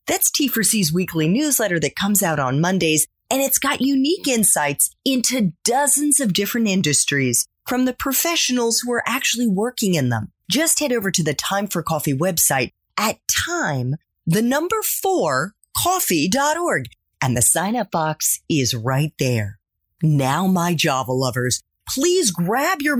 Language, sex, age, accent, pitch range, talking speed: English, female, 30-49, American, 145-240 Hz, 140 wpm